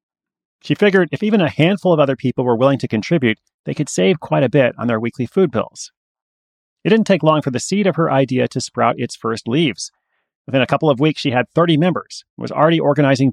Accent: American